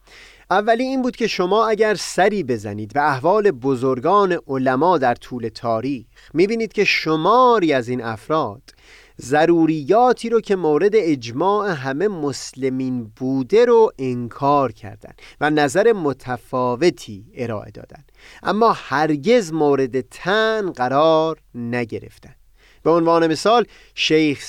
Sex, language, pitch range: male, Persian, 125-190 Hz